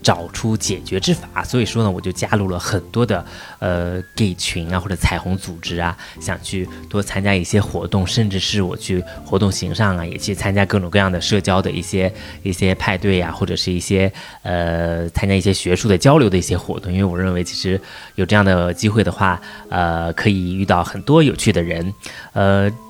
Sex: male